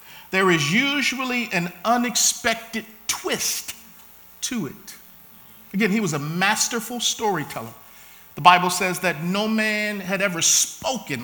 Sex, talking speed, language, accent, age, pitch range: male, 125 wpm, English, American, 50-69, 175-230 Hz